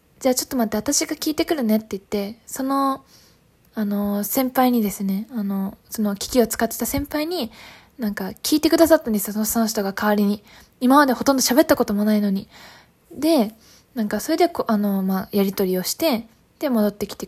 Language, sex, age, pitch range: Japanese, female, 20-39, 210-255 Hz